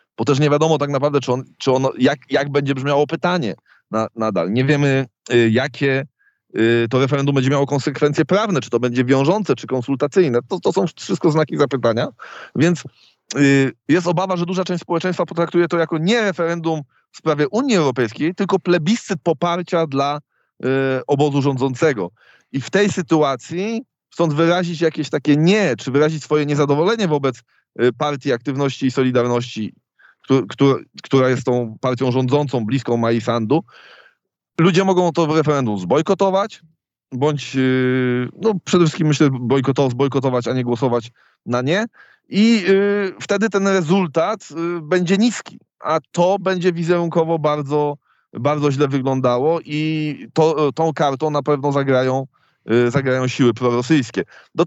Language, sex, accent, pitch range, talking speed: Polish, male, native, 135-180 Hz, 140 wpm